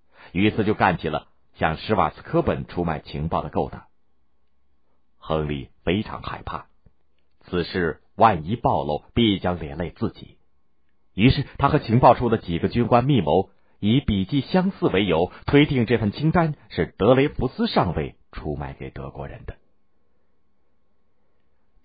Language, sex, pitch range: Chinese, male, 75-120 Hz